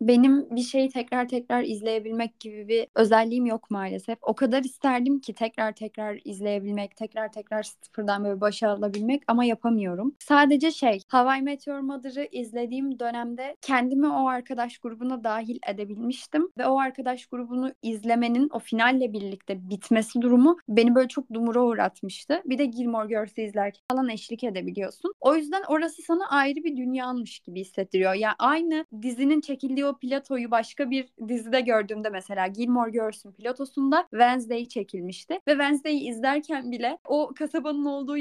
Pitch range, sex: 220-275 Hz, female